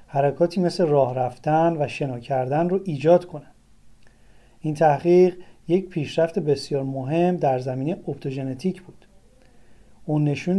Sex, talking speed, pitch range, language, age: male, 125 wpm, 145-180 Hz, Persian, 30-49